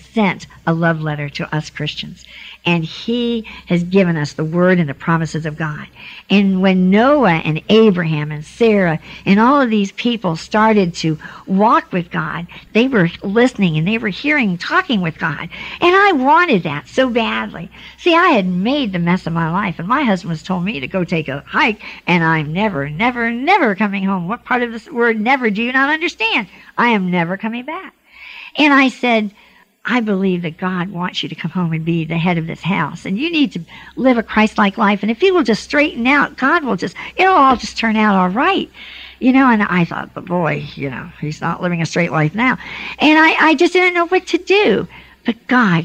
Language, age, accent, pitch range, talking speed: English, 60-79, American, 170-240 Hz, 215 wpm